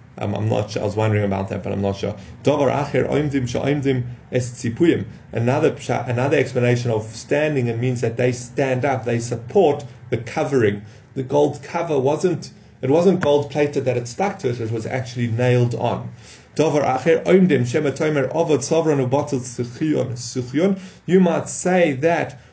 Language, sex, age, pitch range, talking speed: English, male, 30-49, 115-150 Hz, 135 wpm